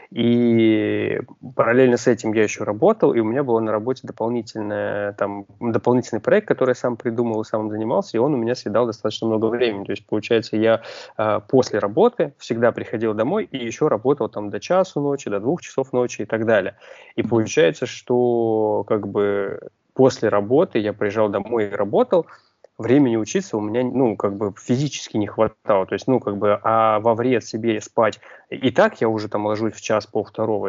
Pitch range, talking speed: 105-120 Hz, 180 wpm